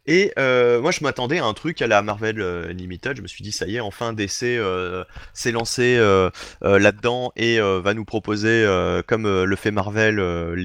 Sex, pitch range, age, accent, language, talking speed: male, 95-125 Hz, 30-49, French, French, 210 wpm